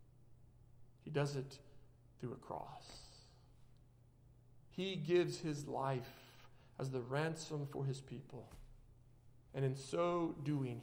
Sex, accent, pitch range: male, American, 125-185 Hz